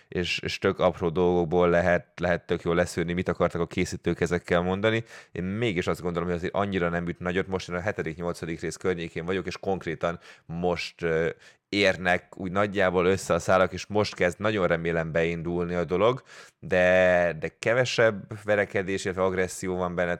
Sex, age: male, 20-39